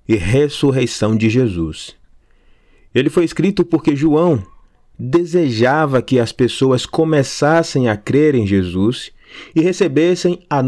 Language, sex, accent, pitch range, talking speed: Portuguese, male, Brazilian, 115-165 Hz, 120 wpm